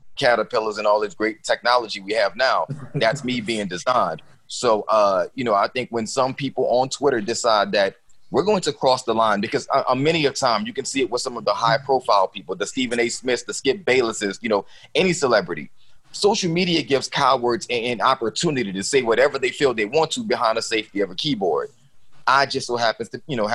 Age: 30-49